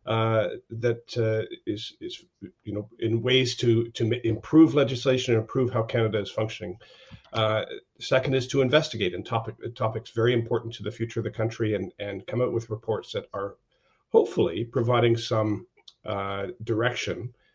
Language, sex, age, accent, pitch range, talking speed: English, male, 50-69, American, 110-125 Hz, 165 wpm